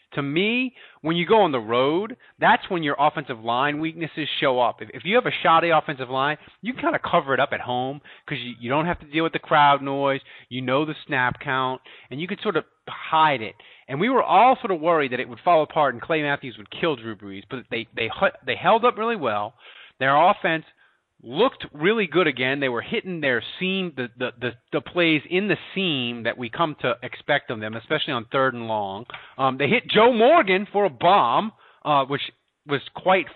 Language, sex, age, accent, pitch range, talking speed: English, male, 30-49, American, 130-185 Hz, 225 wpm